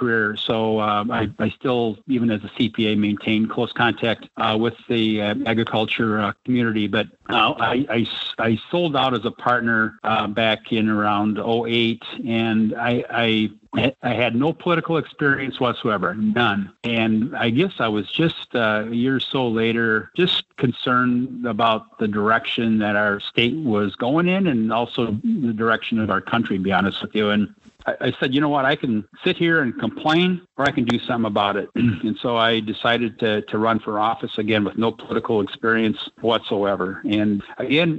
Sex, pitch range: male, 105-120 Hz